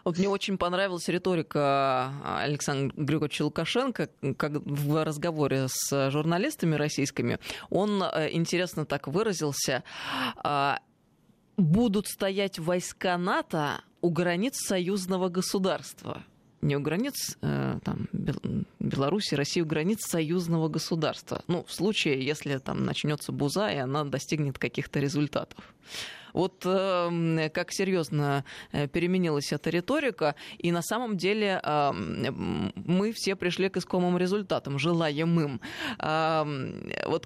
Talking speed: 105 wpm